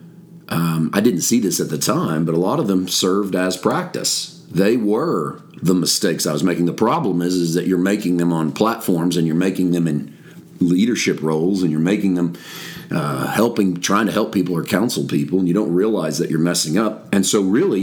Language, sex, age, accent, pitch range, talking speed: English, male, 40-59, American, 85-105 Hz, 215 wpm